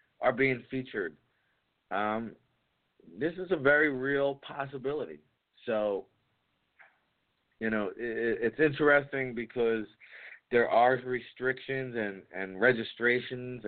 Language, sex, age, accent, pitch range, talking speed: English, male, 40-59, American, 110-130 Hz, 95 wpm